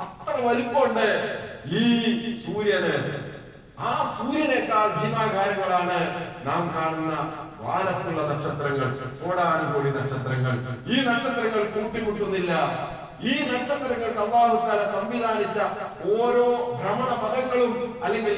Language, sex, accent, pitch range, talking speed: Malayalam, male, native, 135-205 Hz, 40 wpm